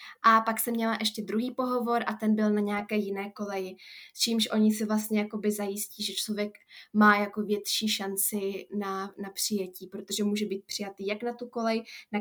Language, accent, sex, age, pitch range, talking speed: Czech, native, female, 10-29, 205-220 Hz, 185 wpm